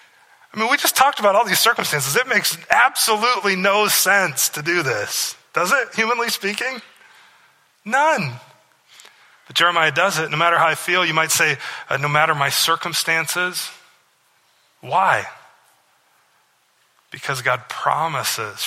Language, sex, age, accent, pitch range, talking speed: English, male, 30-49, American, 140-185 Hz, 140 wpm